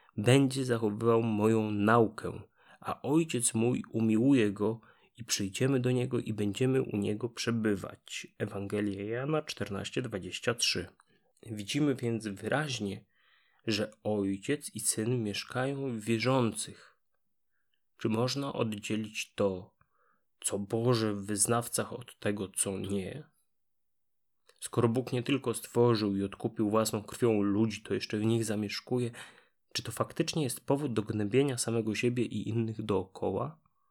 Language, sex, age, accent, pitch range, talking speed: Polish, male, 30-49, native, 105-130 Hz, 125 wpm